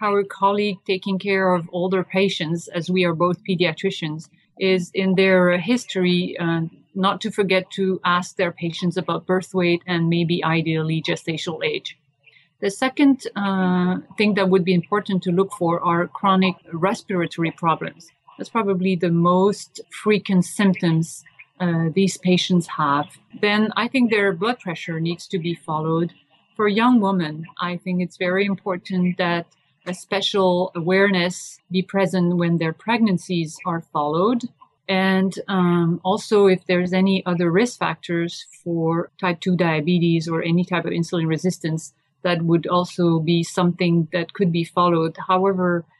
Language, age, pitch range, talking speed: English, 40-59, 170-190 Hz, 150 wpm